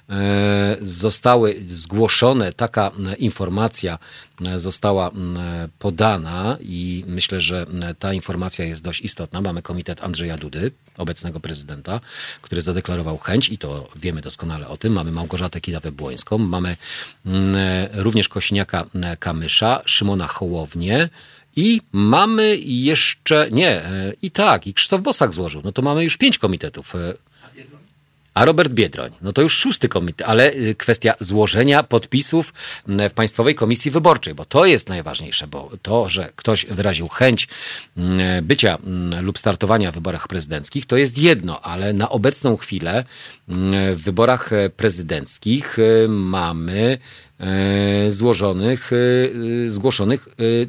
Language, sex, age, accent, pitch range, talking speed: Polish, male, 40-59, native, 90-120 Hz, 115 wpm